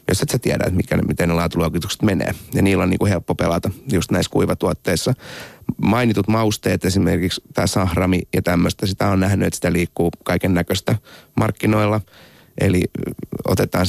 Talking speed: 155 wpm